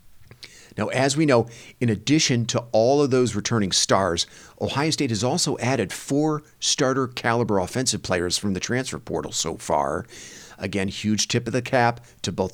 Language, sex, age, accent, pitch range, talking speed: English, male, 50-69, American, 105-125 Hz, 170 wpm